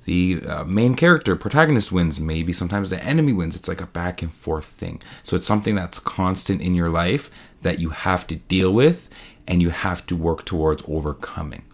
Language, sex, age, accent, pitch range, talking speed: English, male, 20-39, American, 85-105 Hz, 200 wpm